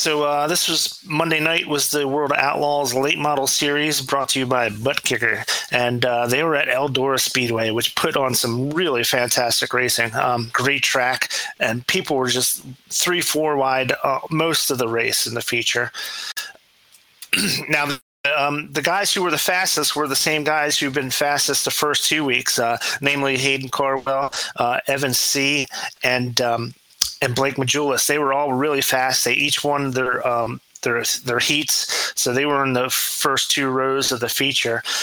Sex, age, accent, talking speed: male, 30-49, American, 180 wpm